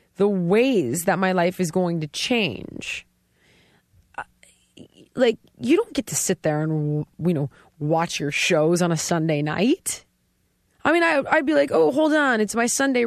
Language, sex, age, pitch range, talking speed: English, female, 20-39, 185-265 Hz, 170 wpm